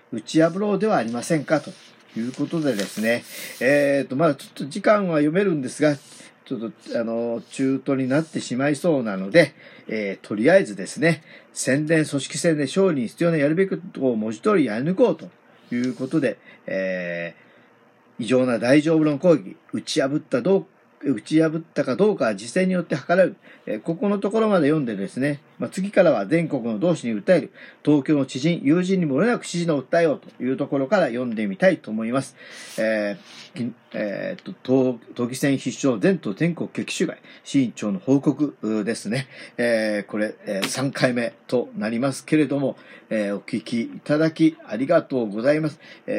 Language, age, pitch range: Japanese, 40-59, 120-170 Hz